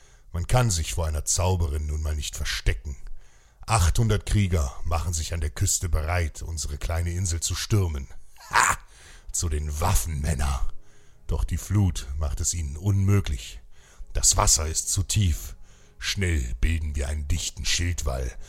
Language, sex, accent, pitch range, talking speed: German, male, German, 75-95 Hz, 145 wpm